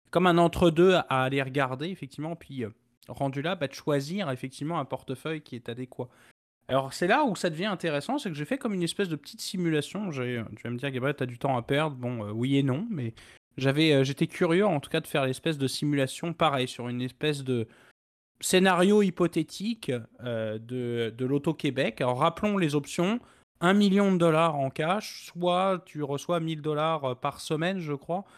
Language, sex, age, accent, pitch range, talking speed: French, male, 20-39, French, 125-175 Hz, 200 wpm